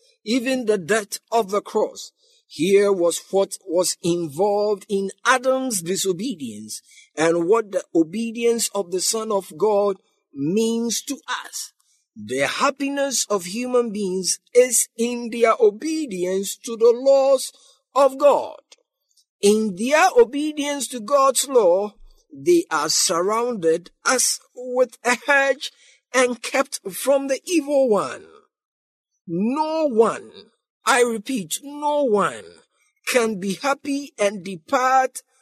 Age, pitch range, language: 50-69, 205-280 Hz, English